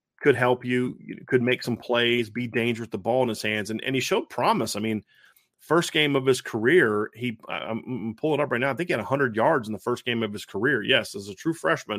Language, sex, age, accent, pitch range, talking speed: English, male, 30-49, American, 110-125 Hz, 260 wpm